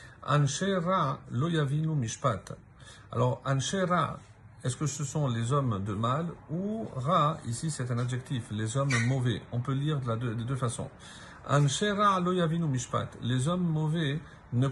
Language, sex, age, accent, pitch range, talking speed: French, male, 50-69, French, 120-150 Hz, 145 wpm